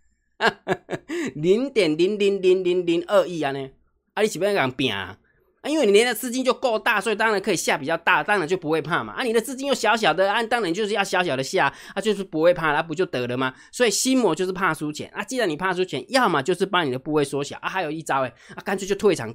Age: 20-39